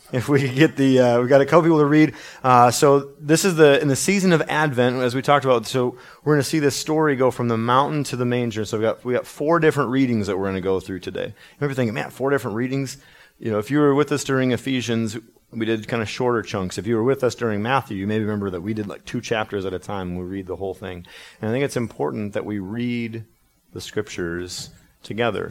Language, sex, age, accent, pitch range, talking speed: English, male, 30-49, American, 95-125 Hz, 265 wpm